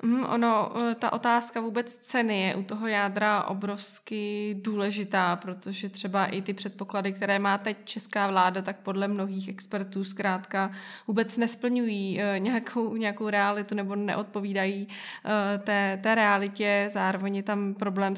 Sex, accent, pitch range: female, native, 195-225 Hz